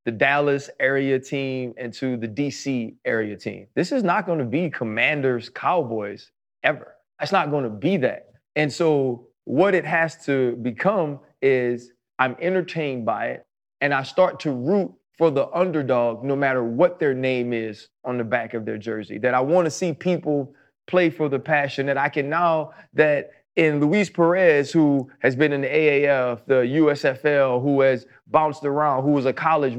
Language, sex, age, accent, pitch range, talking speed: English, male, 30-49, American, 135-165 Hz, 175 wpm